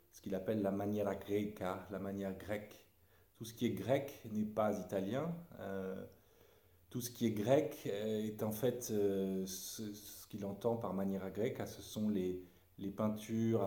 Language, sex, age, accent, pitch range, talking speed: French, male, 40-59, French, 95-120 Hz, 170 wpm